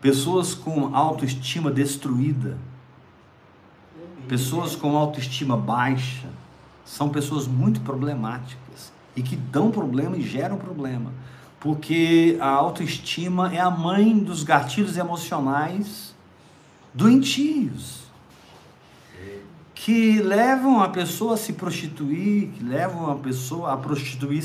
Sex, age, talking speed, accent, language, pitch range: male, 50-69, 105 wpm, Brazilian, Portuguese, 135-190 Hz